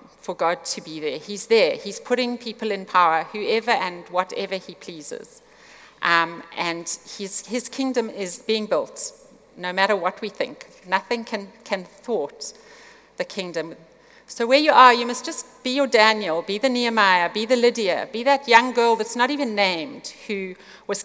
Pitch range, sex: 190-250 Hz, female